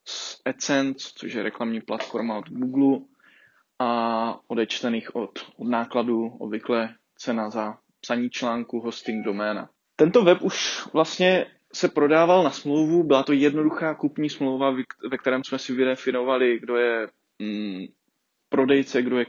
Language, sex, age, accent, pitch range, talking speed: Czech, male, 20-39, native, 120-150 Hz, 130 wpm